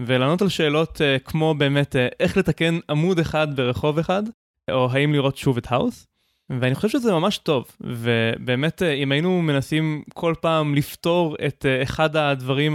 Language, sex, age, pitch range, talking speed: Hebrew, male, 20-39, 130-170 Hz, 150 wpm